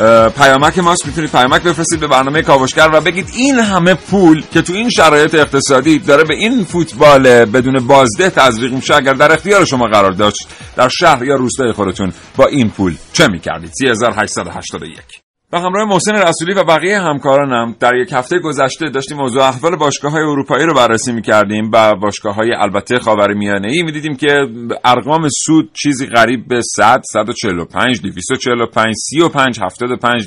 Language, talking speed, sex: Persian, 160 wpm, male